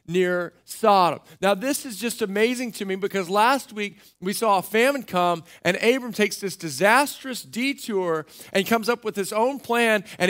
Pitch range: 195-260 Hz